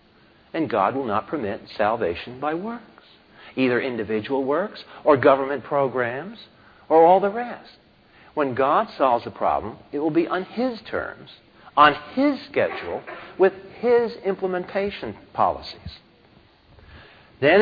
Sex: male